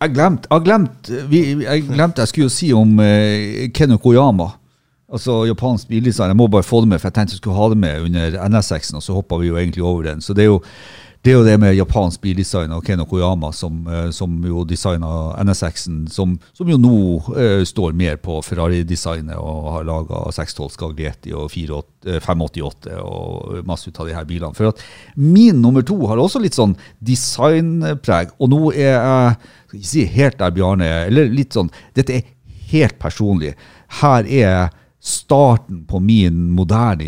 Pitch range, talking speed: 85-115 Hz, 185 wpm